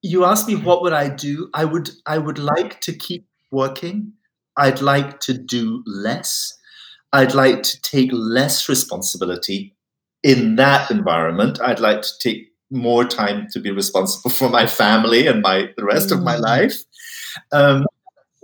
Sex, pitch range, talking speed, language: male, 125-205 Hz, 160 wpm, English